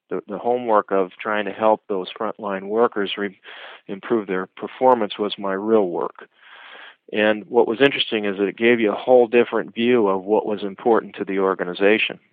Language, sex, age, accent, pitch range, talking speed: English, male, 40-59, American, 95-110 Hz, 185 wpm